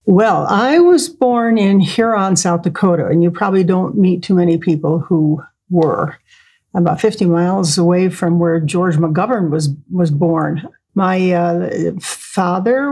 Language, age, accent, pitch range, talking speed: English, 50-69, American, 170-205 Hz, 155 wpm